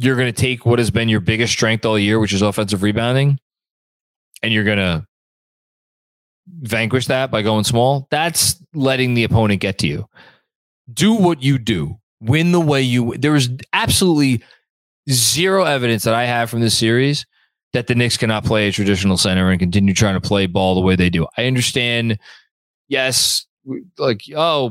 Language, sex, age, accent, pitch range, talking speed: English, male, 20-39, American, 110-145 Hz, 180 wpm